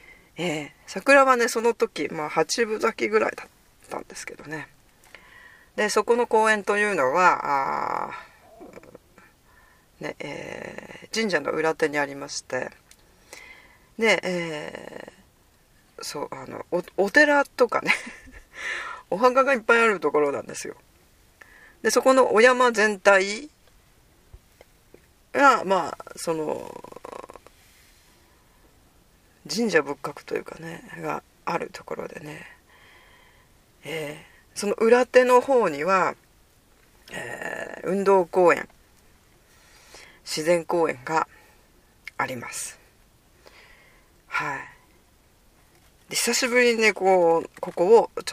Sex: female